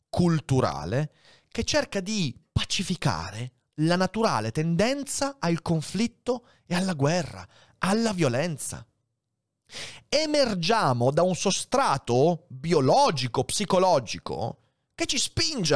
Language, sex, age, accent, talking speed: Italian, male, 30-49, native, 90 wpm